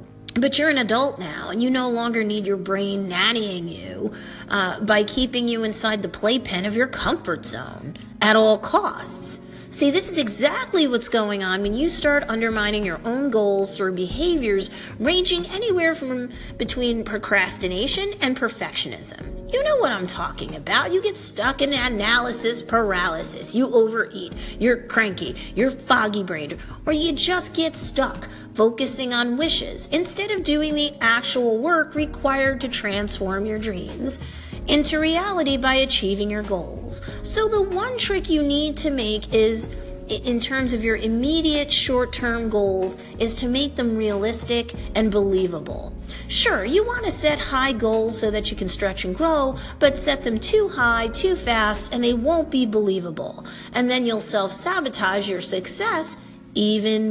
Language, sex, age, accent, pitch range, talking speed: English, female, 40-59, American, 210-290 Hz, 160 wpm